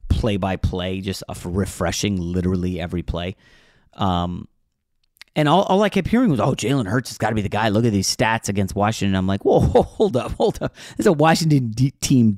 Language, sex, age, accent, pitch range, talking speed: English, male, 30-49, American, 100-150 Hz, 220 wpm